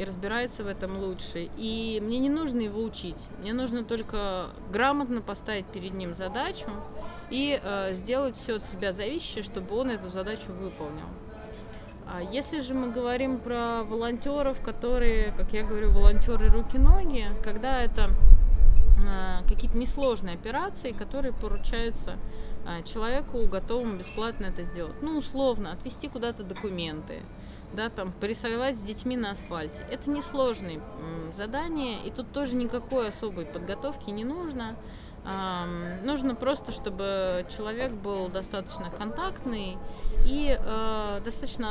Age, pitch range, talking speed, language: 20-39, 195-250 Hz, 130 wpm, Russian